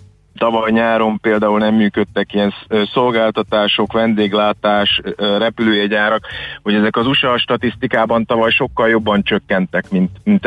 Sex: male